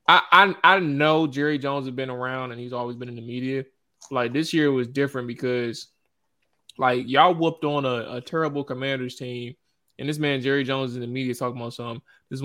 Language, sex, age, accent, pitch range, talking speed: English, male, 20-39, American, 125-155 Hz, 220 wpm